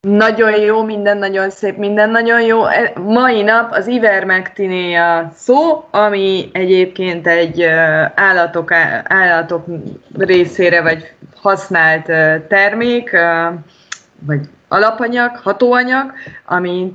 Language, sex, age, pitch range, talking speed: Hungarian, female, 20-39, 165-210 Hz, 95 wpm